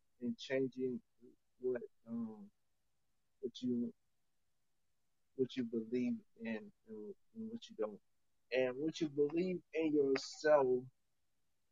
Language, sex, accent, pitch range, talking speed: English, male, American, 105-140 Hz, 100 wpm